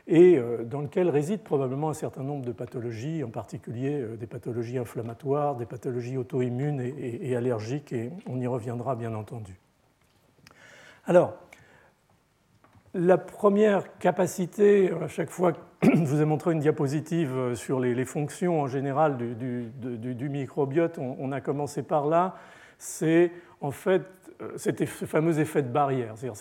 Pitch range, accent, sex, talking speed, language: 125-165 Hz, French, male, 140 wpm, French